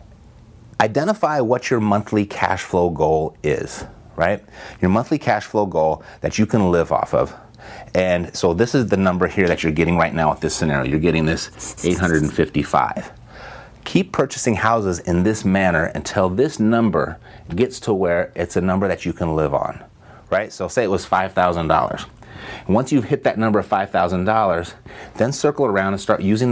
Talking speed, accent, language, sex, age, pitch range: 175 wpm, American, English, male, 30-49, 90-115 Hz